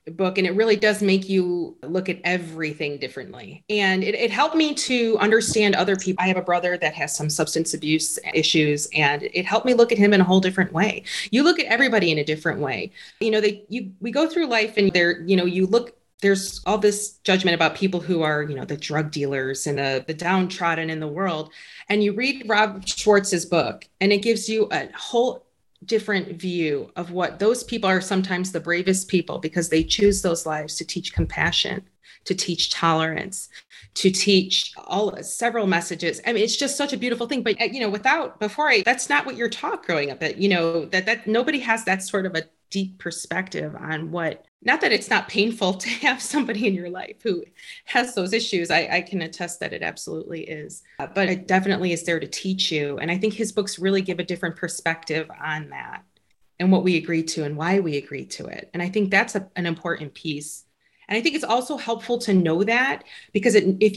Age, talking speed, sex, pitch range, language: 30-49, 220 wpm, female, 165-215 Hz, English